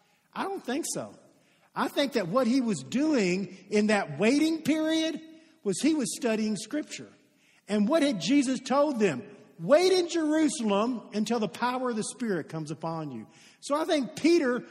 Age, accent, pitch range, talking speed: 50-69, American, 195-270 Hz, 170 wpm